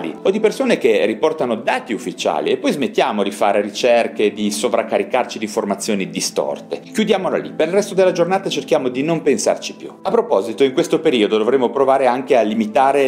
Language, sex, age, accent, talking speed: Italian, male, 40-59, native, 185 wpm